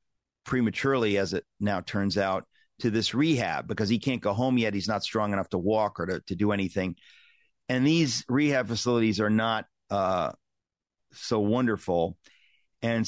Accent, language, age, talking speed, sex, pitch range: American, English, 40-59, 165 wpm, male, 100-120 Hz